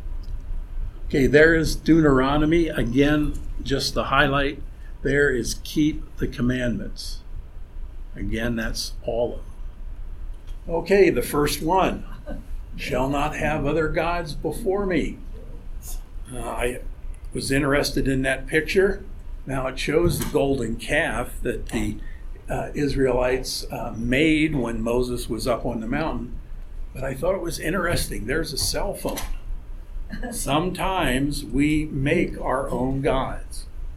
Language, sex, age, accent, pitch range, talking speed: English, male, 50-69, American, 120-150 Hz, 125 wpm